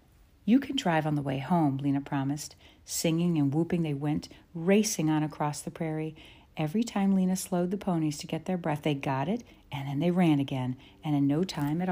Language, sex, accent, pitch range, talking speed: English, female, American, 140-185 Hz, 210 wpm